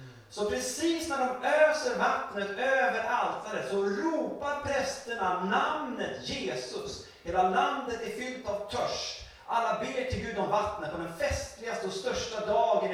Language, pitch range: Swedish, 180-270 Hz